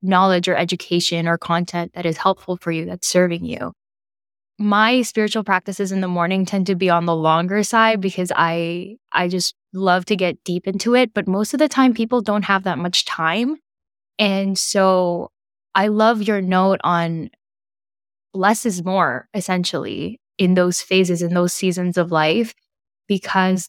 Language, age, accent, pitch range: English, 10-29, American, 175-215 Hz